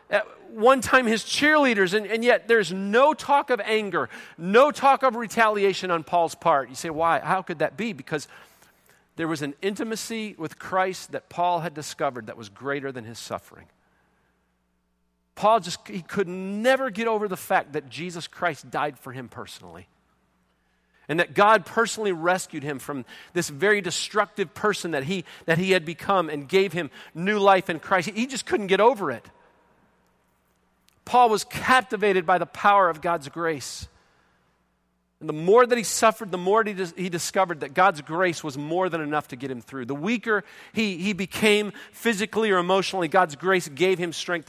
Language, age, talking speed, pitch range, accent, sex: English, 40-59, 180 wpm, 150-210 Hz, American, male